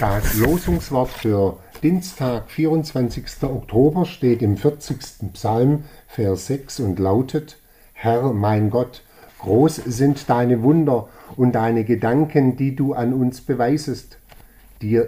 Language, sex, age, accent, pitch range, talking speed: German, male, 50-69, German, 105-135 Hz, 120 wpm